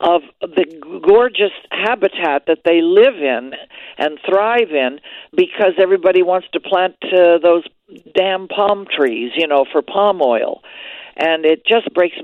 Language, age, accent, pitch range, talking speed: English, 60-79, American, 140-180 Hz, 145 wpm